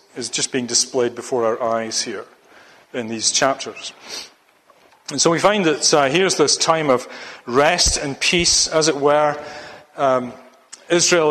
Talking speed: 155 wpm